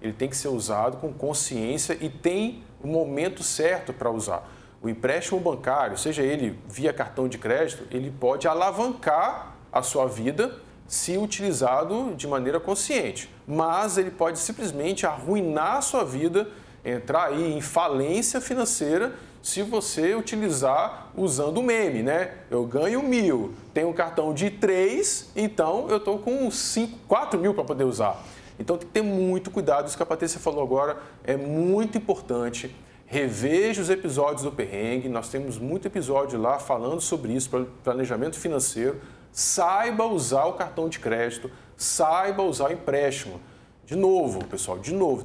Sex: male